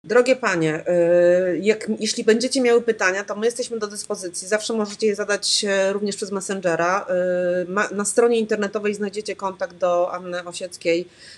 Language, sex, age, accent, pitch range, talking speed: Polish, female, 30-49, native, 180-215 Hz, 140 wpm